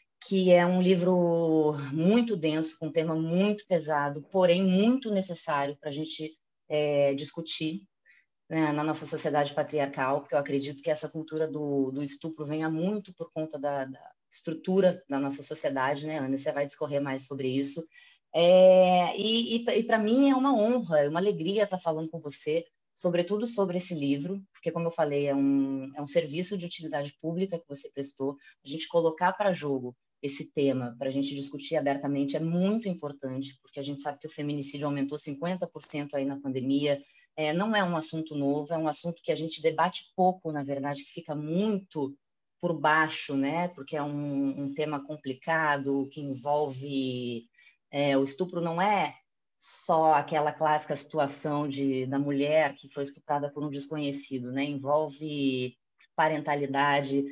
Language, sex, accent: Portuguese, female, Brazilian